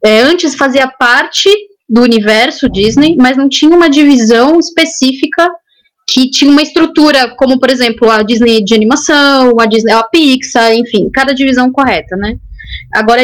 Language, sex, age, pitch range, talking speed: Portuguese, female, 10-29, 225-290 Hz, 155 wpm